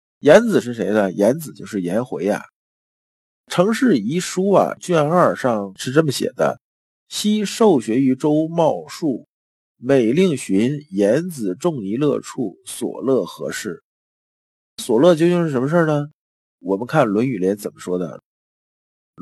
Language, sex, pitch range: Chinese, male, 100-145 Hz